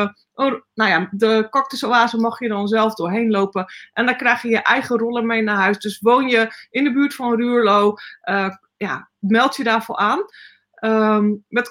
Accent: Dutch